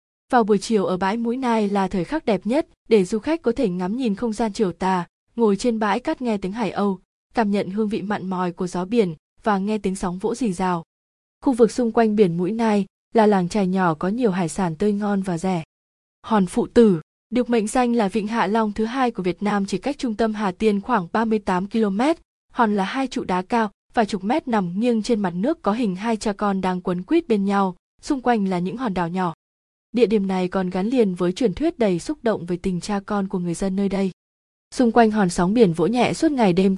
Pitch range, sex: 185-230 Hz, female